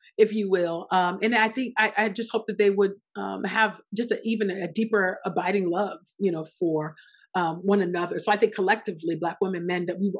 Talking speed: 220 wpm